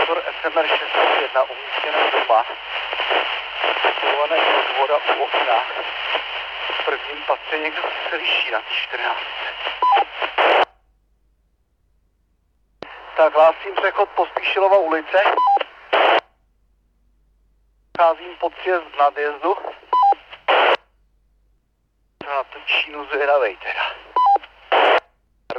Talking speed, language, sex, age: 60 wpm, Czech, male, 50-69